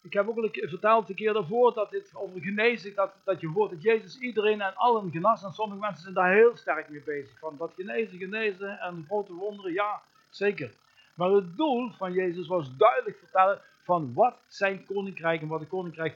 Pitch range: 170-225 Hz